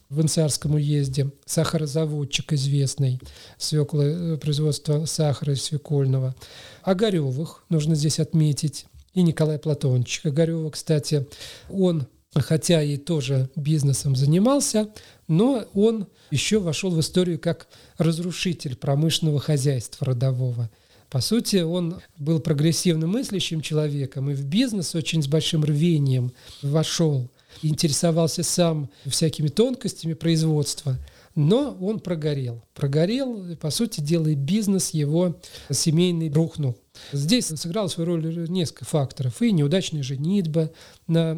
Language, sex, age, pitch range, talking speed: Russian, male, 40-59, 145-170 Hz, 110 wpm